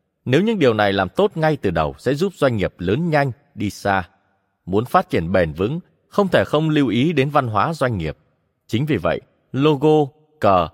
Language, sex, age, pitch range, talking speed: Vietnamese, male, 20-39, 100-150 Hz, 205 wpm